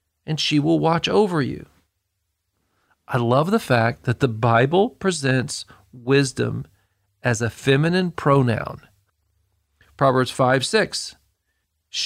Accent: American